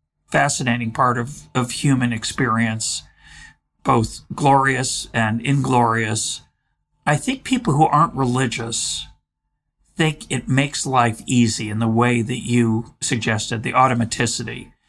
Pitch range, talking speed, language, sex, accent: 115-160 Hz, 115 wpm, English, male, American